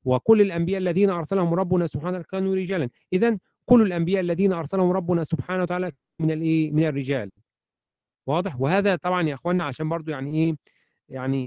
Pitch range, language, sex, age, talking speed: 145-190 Hz, Arabic, male, 40-59, 150 wpm